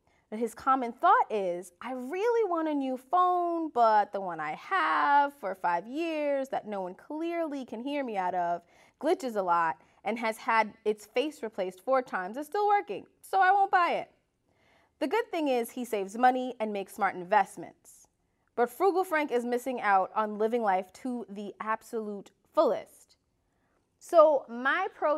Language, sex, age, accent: English, female, 20-39, American